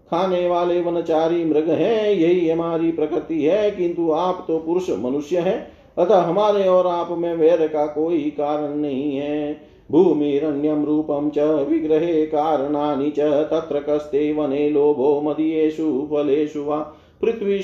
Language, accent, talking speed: Hindi, native, 115 wpm